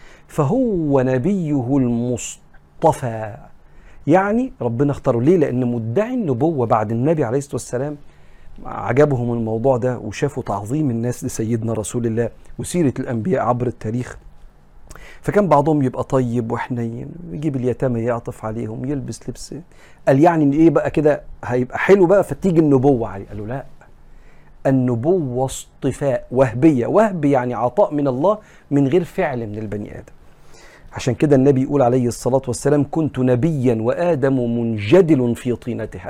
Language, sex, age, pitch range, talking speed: Arabic, male, 50-69, 110-145 Hz, 130 wpm